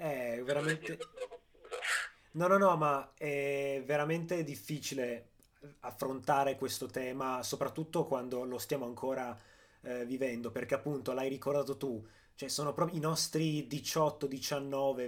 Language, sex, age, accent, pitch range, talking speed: Italian, male, 20-39, native, 125-145 Hz, 125 wpm